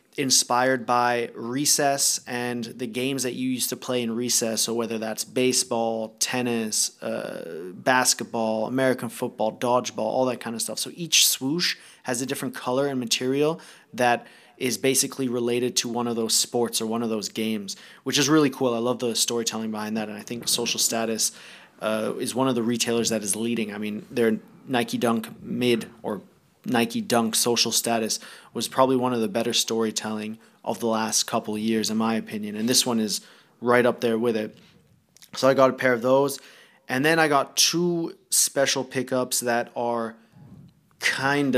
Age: 30-49